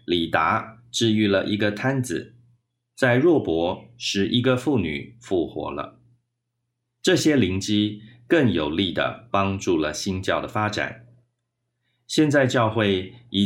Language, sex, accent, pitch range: Chinese, male, native, 100-120 Hz